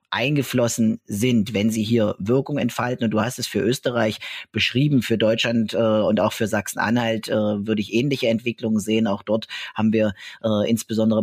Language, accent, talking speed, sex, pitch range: German, German, 170 wpm, male, 110-125 Hz